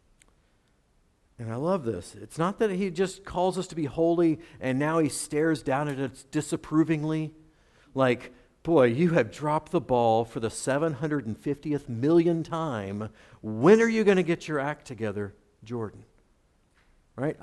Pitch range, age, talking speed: 130-190 Hz, 50-69, 155 wpm